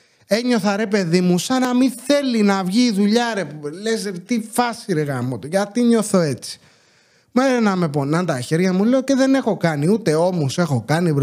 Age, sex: 30-49, male